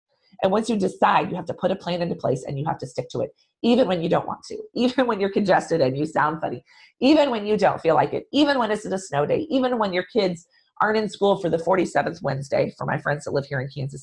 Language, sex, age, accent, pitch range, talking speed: English, female, 30-49, American, 165-230 Hz, 280 wpm